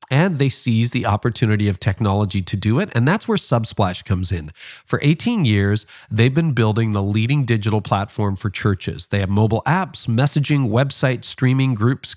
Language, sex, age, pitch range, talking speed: English, male, 40-59, 105-140 Hz, 180 wpm